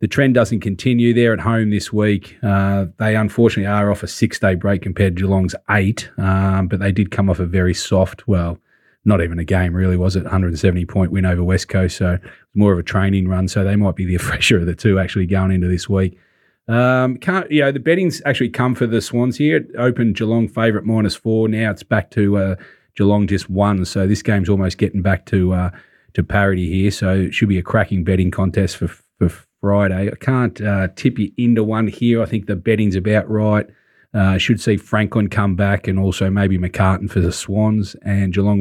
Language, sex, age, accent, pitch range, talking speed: English, male, 30-49, Australian, 95-110 Hz, 215 wpm